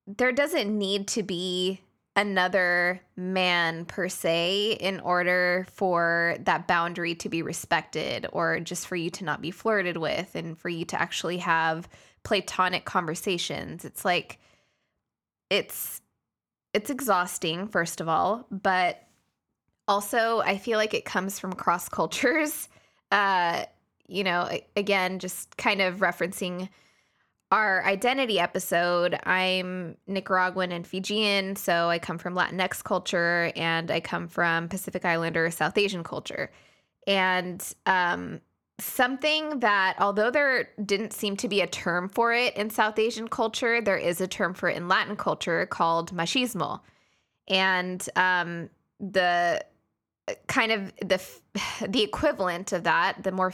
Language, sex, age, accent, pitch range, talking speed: English, female, 10-29, American, 175-205 Hz, 140 wpm